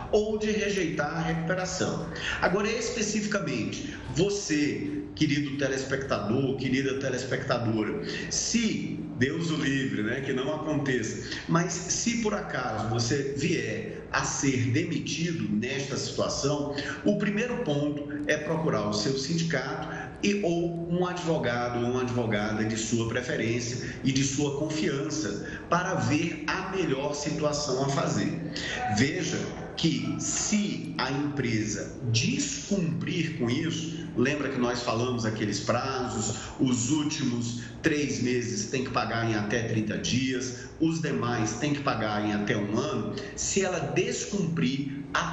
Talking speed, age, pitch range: 130 wpm, 40-59, 125-160 Hz